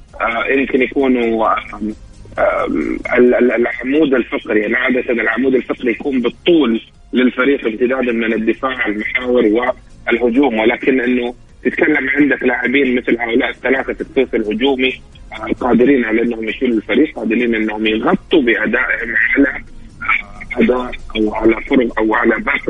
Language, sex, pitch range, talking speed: English, male, 110-140 Hz, 110 wpm